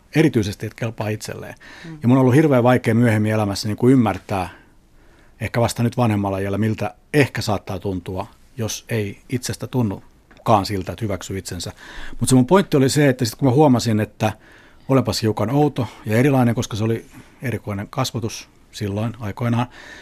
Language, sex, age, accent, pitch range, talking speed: Finnish, male, 60-79, native, 105-130 Hz, 170 wpm